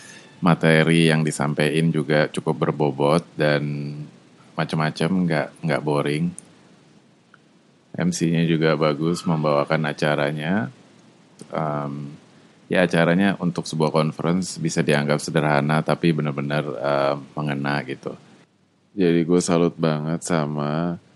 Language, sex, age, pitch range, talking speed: Indonesian, male, 20-39, 75-85 Hz, 100 wpm